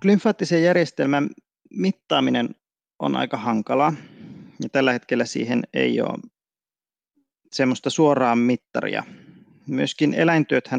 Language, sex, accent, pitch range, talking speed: Finnish, male, native, 120-150 Hz, 95 wpm